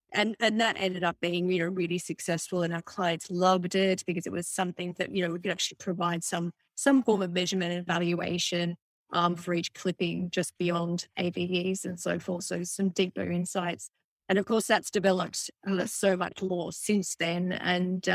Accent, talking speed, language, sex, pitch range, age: Australian, 190 wpm, English, female, 175-190 Hz, 30-49